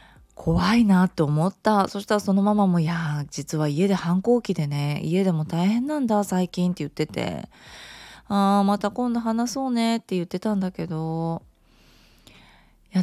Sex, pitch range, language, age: female, 160-240 Hz, Japanese, 20-39